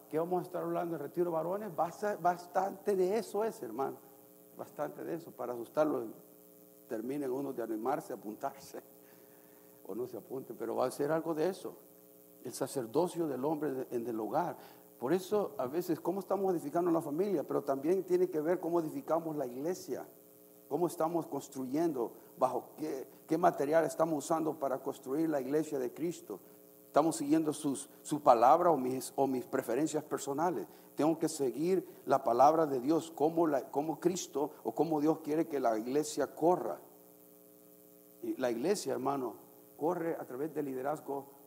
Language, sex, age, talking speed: Spanish, male, 50-69, 165 wpm